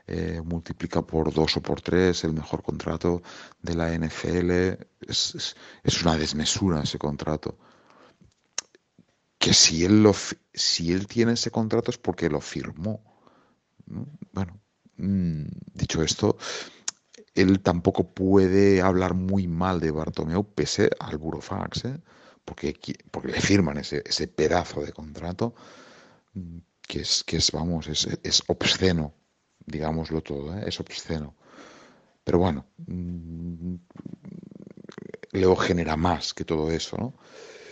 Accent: Spanish